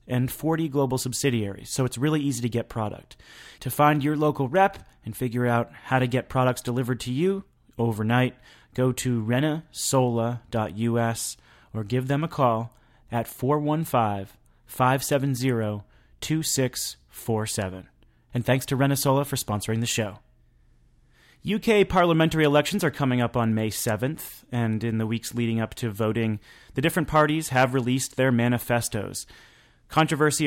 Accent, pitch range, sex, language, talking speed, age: American, 115-140 Hz, male, English, 140 wpm, 30-49